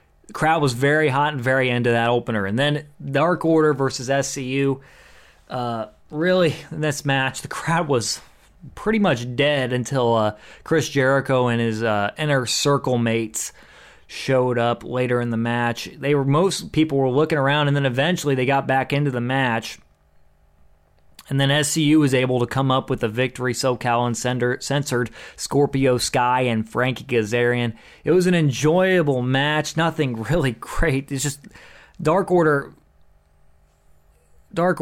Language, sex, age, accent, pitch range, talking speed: English, male, 20-39, American, 120-150 Hz, 160 wpm